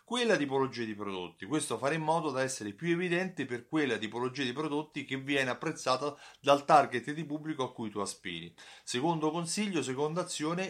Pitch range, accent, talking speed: 110-145 Hz, native, 180 wpm